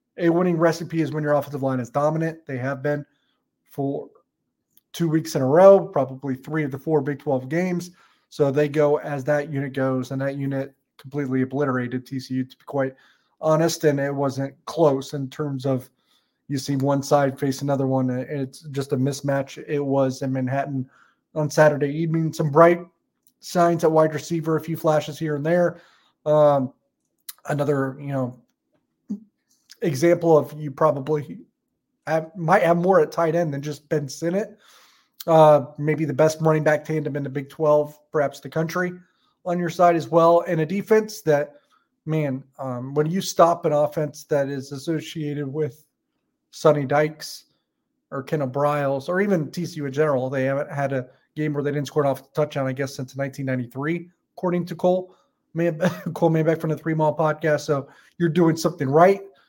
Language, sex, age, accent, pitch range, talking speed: English, male, 30-49, American, 140-165 Hz, 180 wpm